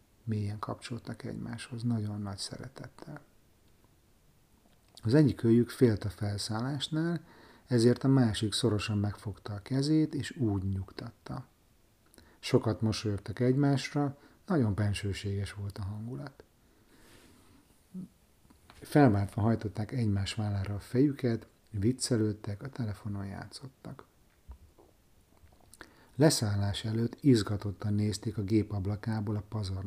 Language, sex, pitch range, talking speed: Hungarian, male, 105-130 Hz, 100 wpm